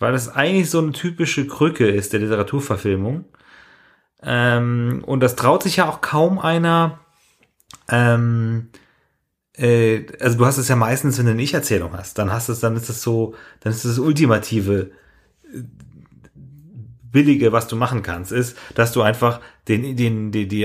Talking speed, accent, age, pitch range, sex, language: 170 wpm, German, 30-49, 110-130 Hz, male, German